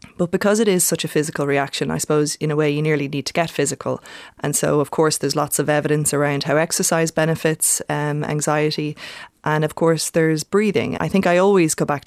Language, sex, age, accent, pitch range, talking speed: English, female, 20-39, Irish, 150-185 Hz, 220 wpm